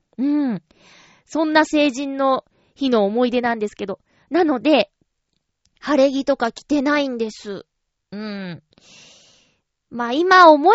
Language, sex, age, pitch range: Japanese, female, 20-39, 220-320 Hz